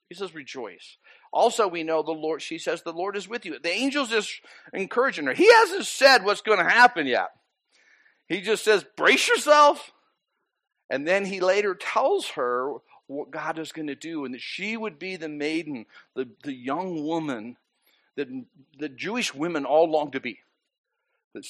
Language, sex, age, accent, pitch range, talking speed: English, male, 50-69, American, 155-245 Hz, 180 wpm